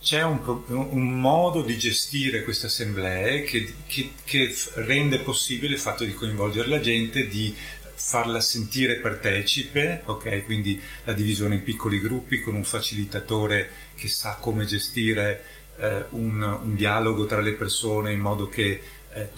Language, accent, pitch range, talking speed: Italian, native, 105-130 Hz, 150 wpm